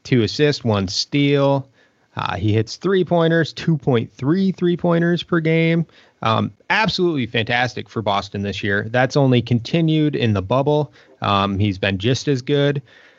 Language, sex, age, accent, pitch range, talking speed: English, male, 30-49, American, 110-155 Hz, 140 wpm